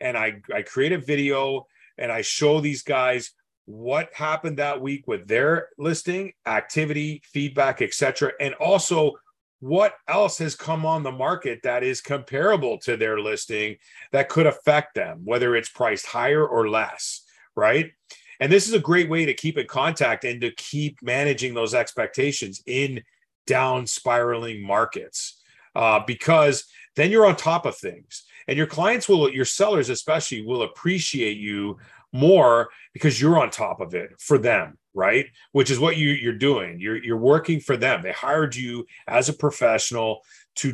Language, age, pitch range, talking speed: English, 40-59, 120-160 Hz, 170 wpm